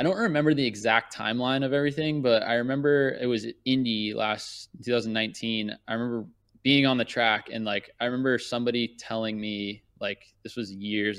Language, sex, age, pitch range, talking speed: English, male, 20-39, 105-120 Hz, 175 wpm